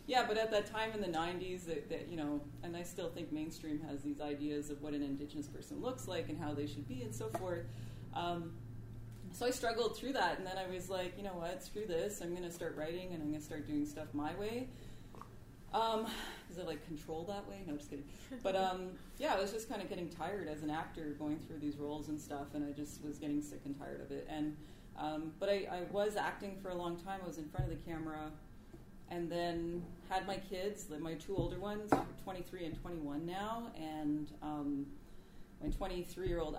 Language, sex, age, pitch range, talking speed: English, female, 20-39, 150-190 Hz, 230 wpm